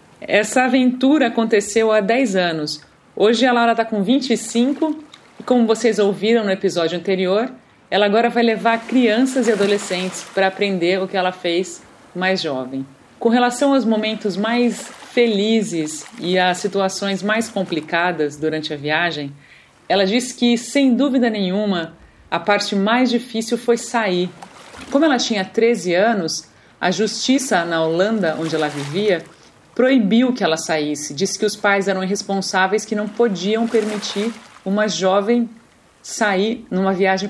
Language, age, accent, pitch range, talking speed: Portuguese, 40-59, Brazilian, 185-230 Hz, 145 wpm